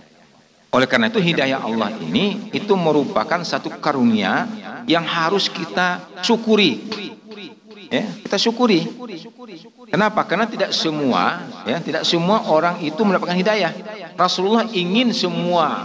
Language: Indonesian